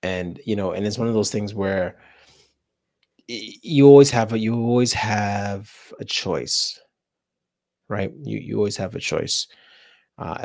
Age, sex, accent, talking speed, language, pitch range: 30-49, male, American, 155 wpm, English, 90-105 Hz